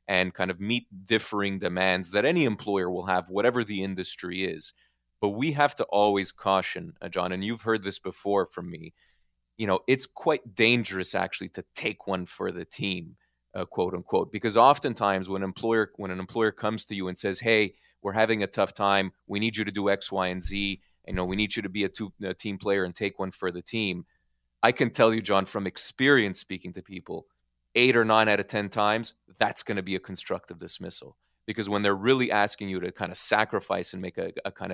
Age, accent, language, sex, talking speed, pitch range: 30-49, Canadian, English, male, 225 wpm, 95-115 Hz